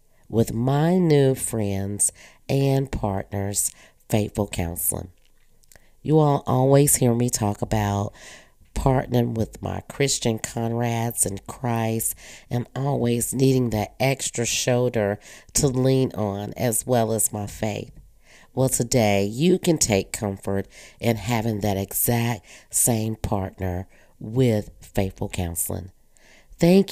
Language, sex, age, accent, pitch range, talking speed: English, female, 40-59, American, 105-130 Hz, 115 wpm